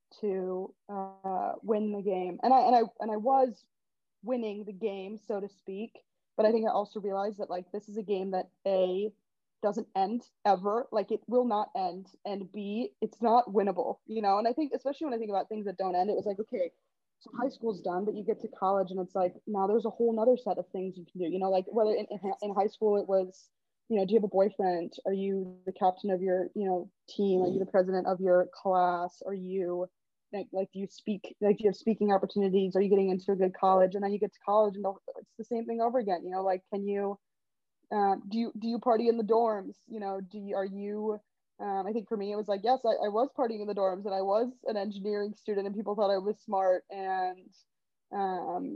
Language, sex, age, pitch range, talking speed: English, female, 20-39, 190-220 Hz, 245 wpm